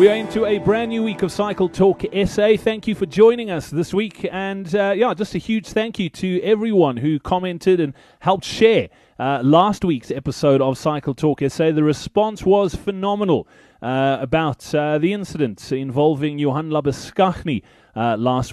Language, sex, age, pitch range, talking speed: English, male, 30-49, 155-210 Hz, 180 wpm